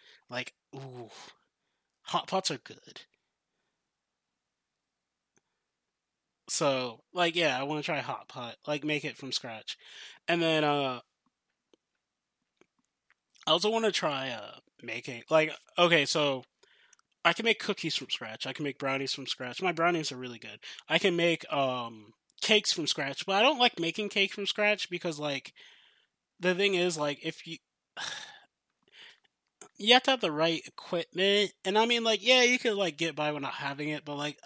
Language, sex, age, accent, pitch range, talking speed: English, male, 20-39, American, 140-190 Hz, 165 wpm